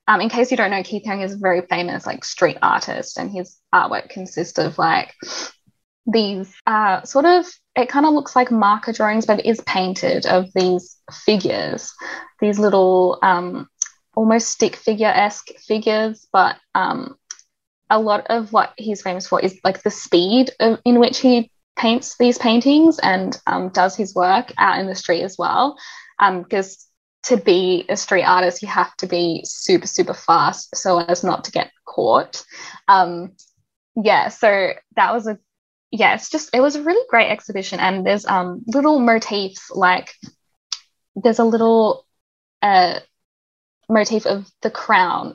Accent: Australian